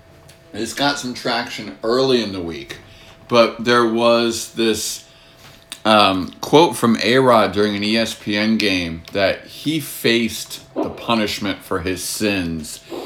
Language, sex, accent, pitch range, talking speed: English, male, American, 105-130 Hz, 130 wpm